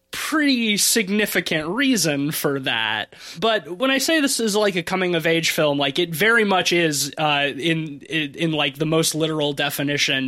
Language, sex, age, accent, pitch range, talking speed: English, male, 20-39, American, 140-170 Hz, 170 wpm